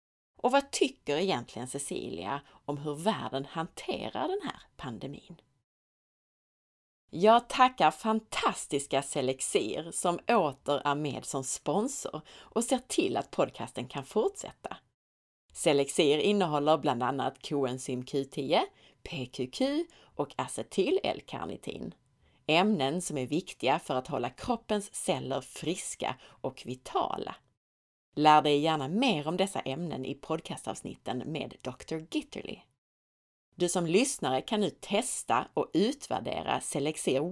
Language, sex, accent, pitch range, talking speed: Swedish, female, native, 140-215 Hz, 115 wpm